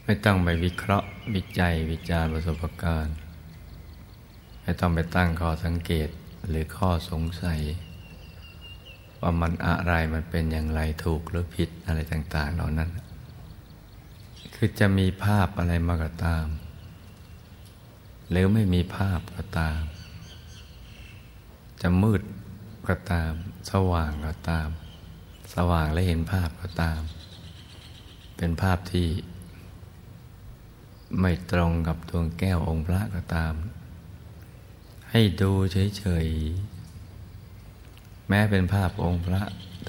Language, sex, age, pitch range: Thai, male, 60-79, 85-100 Hz